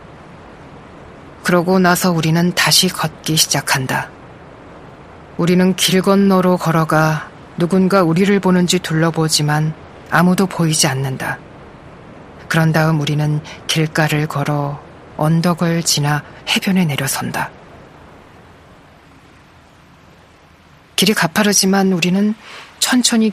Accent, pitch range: native, 155-185 Hz